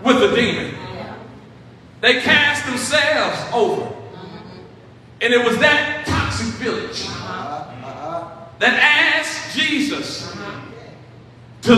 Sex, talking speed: male, 85 wpm